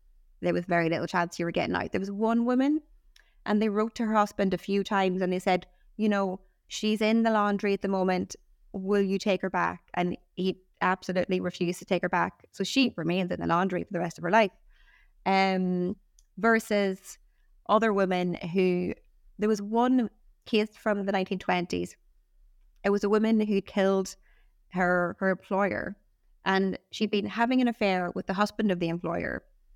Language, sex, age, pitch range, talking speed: English, female, 20-39, 180-215 Hz, 185 wpm